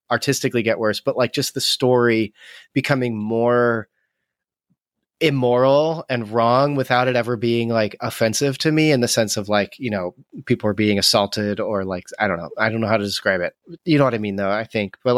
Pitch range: 115-150 Hz